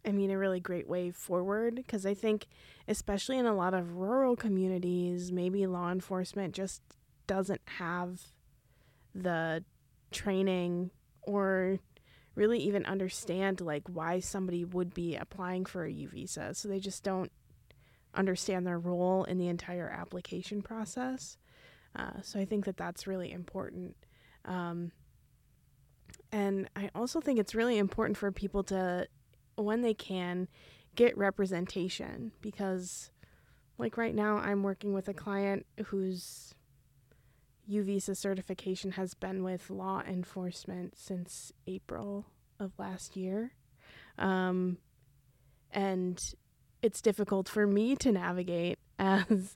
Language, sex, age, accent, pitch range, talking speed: English, female, 20-39, American, 180-200 Hz, 130 wpm